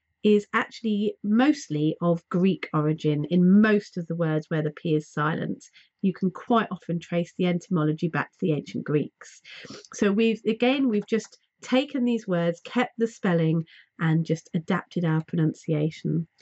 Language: English